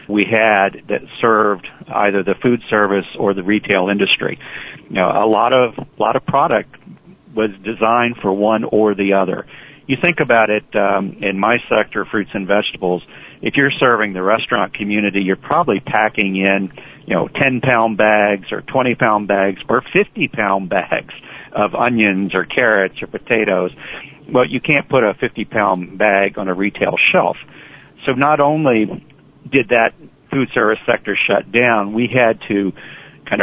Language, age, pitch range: English, 50-69, 100-125 Hz